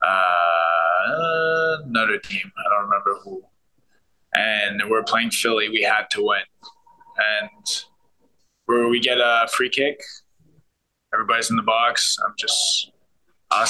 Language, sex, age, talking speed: English, male, 20-39, 125 wpm